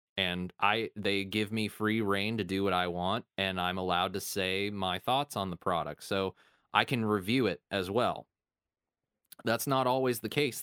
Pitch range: 95-115 Hz